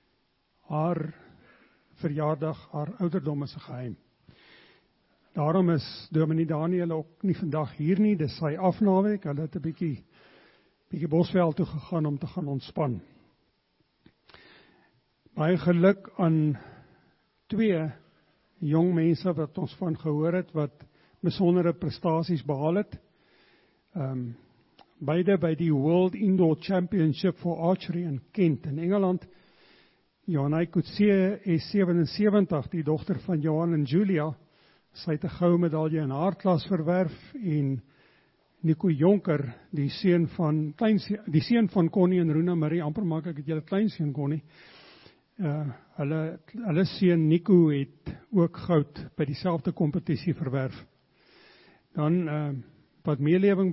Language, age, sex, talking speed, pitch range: English, 50-69, male, 120 wpm, 155-180 Hz